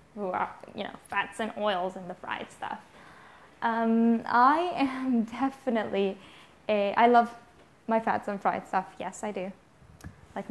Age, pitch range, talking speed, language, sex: 10-29, 205-240 Hz, 155 wpm, English, female